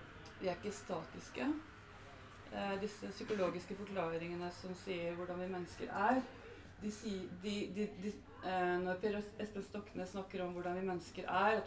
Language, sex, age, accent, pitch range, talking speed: English, female, 30-49, Swedish, 140-195 Hz, 165 wpm